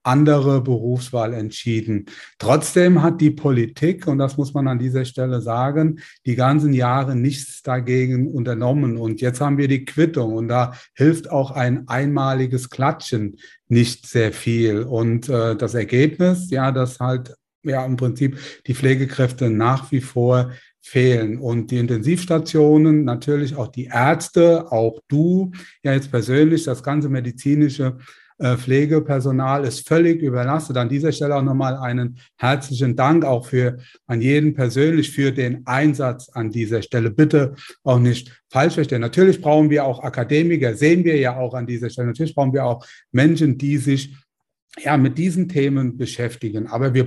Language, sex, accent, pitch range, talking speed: German, male, German, 125-145 Hz, 155 wpm